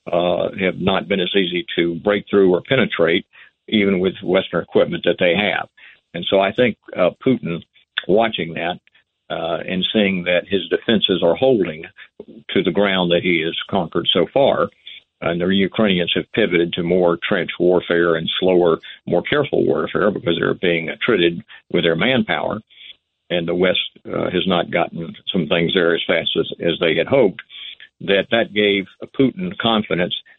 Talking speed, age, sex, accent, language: 170 wpm, 50-69, male, American, English